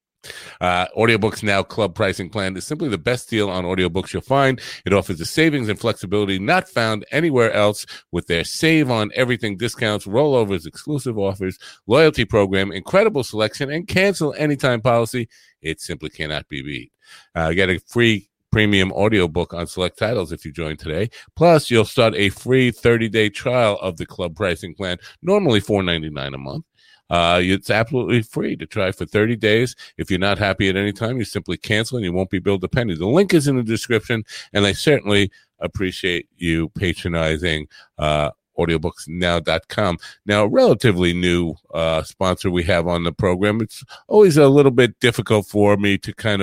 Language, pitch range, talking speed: English, 90-120 Hz, 180 wpm